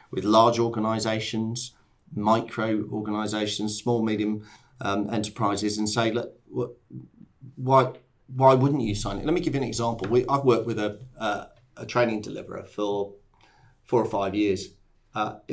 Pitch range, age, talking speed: 105-125 Hz, 40-59, 155 wpm